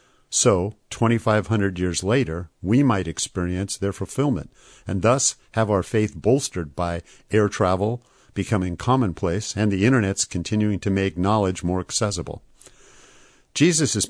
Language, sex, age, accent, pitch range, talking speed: English, male, 50-69, American, 95-115 Hz, 130 wpm